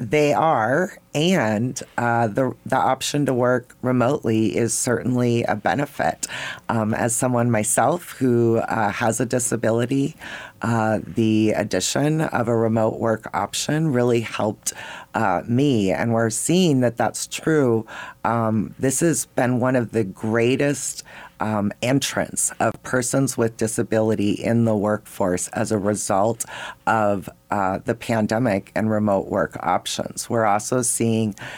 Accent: American